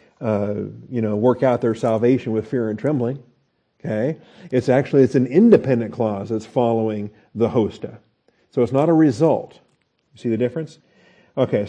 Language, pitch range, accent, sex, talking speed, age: English, 120-140 Hz, American, male, 165 wpm, 50-69